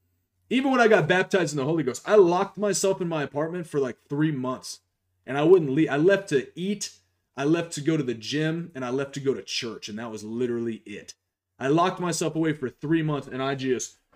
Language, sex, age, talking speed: English, male, 30-49, 235 wpm